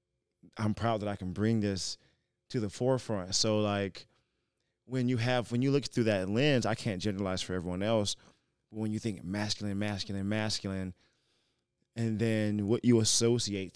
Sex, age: male, 20-39